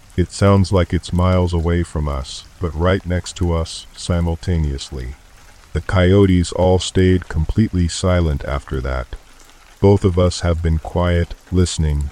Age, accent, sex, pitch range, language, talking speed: 40-59, American, male, 80-90 Hz, English, 145 wpm